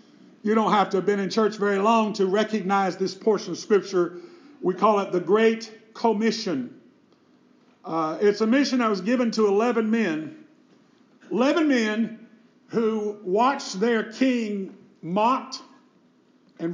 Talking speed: 145 wpm